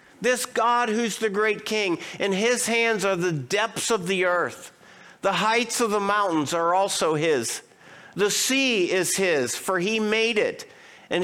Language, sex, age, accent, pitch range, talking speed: English, male, 50-69, American, 190-225 Hz, 170 wpm